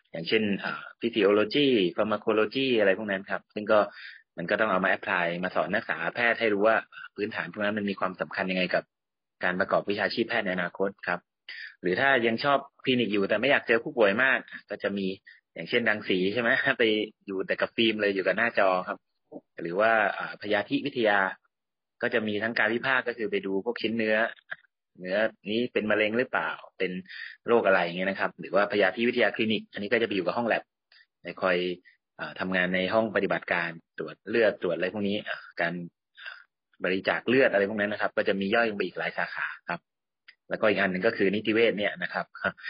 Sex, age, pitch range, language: male, 30-49, 95-110 Hz, Thai